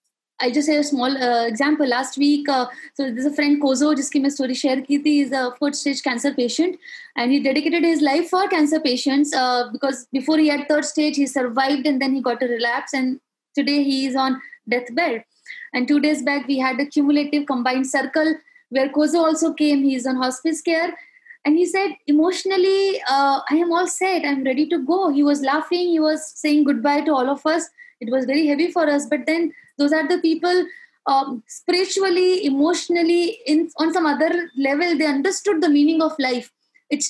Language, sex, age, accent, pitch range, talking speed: English, female, 20-39, Indian, 270-325 Hz, 205 wpm